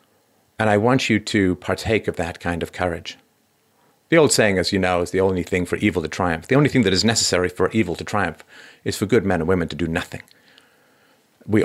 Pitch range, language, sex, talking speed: 85-105 Hz, English, male, 230 wpm